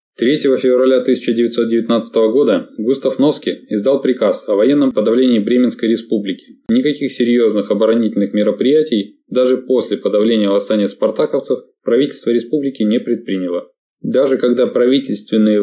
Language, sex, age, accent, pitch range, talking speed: Russian, male, 20-39, native, 105-125 Hz, 110 wpm